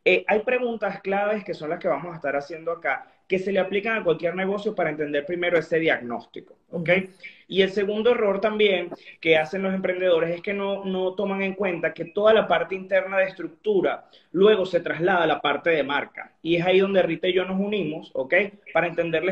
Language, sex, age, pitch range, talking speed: Spanish, male, 30-49, 165-205 Hz, 215 wpm